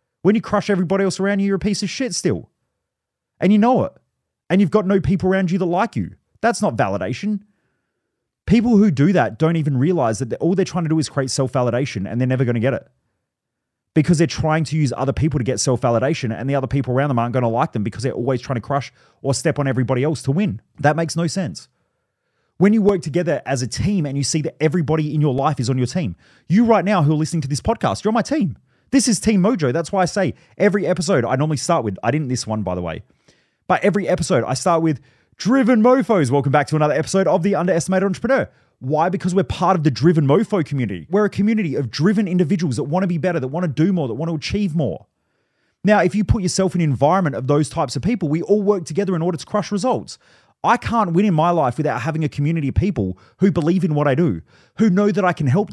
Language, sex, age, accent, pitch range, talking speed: English, male, 30-49, Australian, 140-195 Hz, 255 wpm